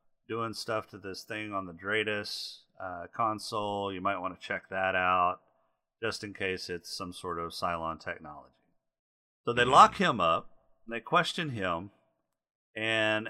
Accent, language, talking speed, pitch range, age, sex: American, English, 165 wpm, 95-130 Hz, 40-59, male